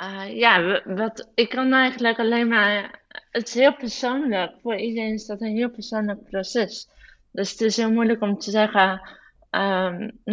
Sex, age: female, 20-39